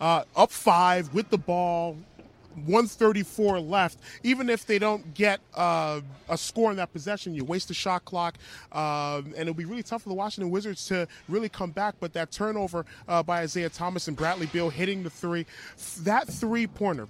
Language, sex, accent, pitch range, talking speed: English, male, American, 135-180 Hz, 185 wpm